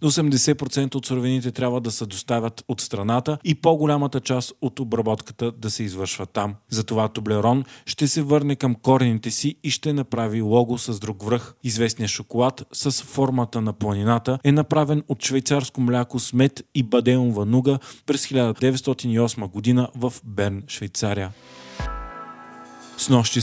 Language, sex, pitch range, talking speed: Bulgarian, male, 110-135 Hz, 140 wpm